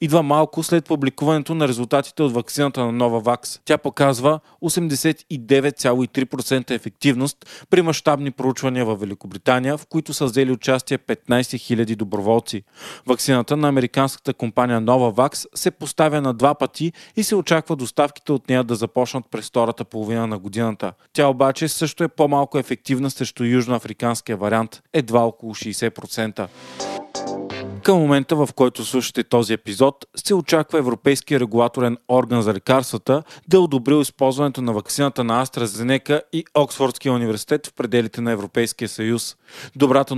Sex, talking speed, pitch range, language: male, 135 wpm, 120-150 Hz, Bulgarian